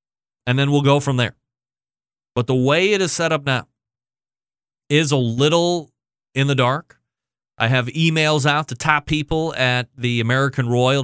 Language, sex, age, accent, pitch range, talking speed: English, male, 30-49, American, 125-155 Hz, 170 wpm